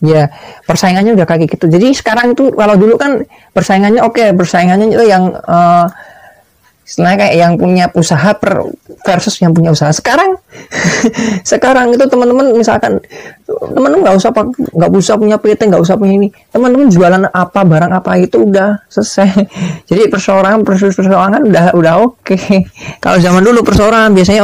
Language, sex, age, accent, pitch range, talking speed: Indonesian, female, 20-39, native, 165-215 Hz, 145 wpm